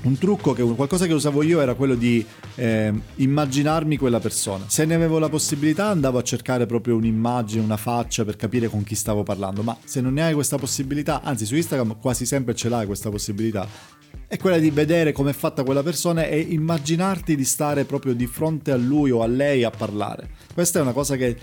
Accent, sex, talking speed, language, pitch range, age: native, male, 210 wpm, Italian, 115-140 Hz, 30-49